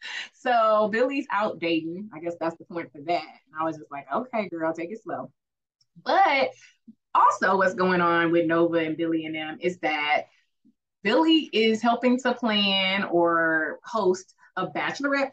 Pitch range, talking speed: 170-250 Hz, 170 wpm